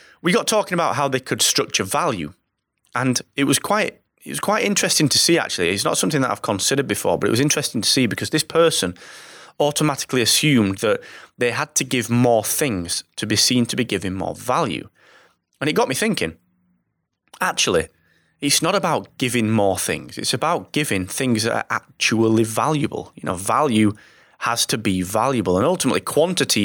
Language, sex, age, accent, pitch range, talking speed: English, male, 30-49, British, 105-150 Hz, 185 wpm